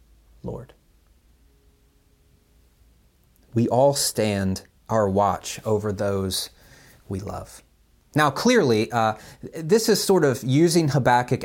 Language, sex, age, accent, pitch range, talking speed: English, male, 30-49, American, 115-150 Hz, 100 wpm